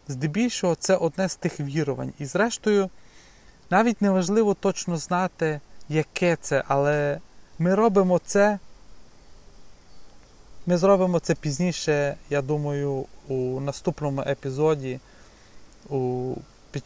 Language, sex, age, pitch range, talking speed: Ukrainian, male, 30-49, 135-165 Hz, 105 wpm